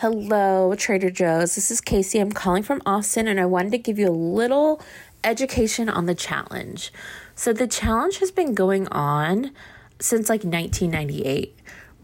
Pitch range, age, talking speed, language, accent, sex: 170-215 Hz, 20-39, 160 wpm, English, American, female